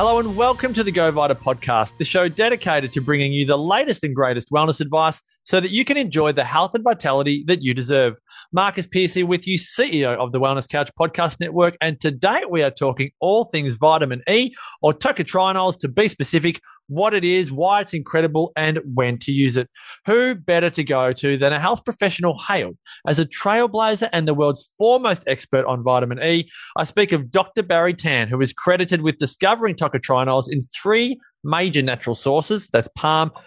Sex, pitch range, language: male, 140-195 Hz, English